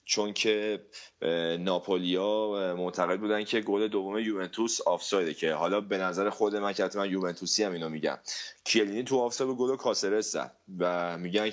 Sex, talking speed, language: male, 145 wpm, Persian